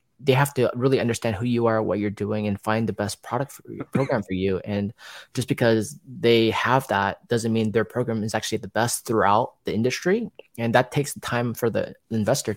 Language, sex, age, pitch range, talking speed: English, male, 20-39, 105-120 Hz, 205 wpm